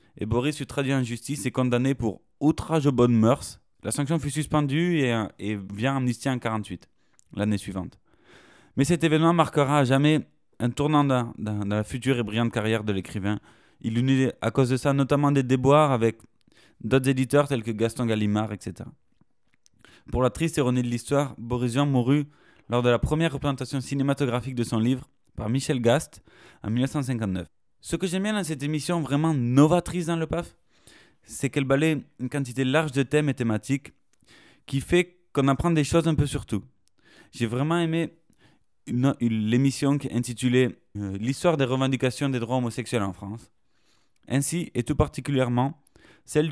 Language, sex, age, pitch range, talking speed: French, male, 20-39, 115-145 Hz, 185 wpm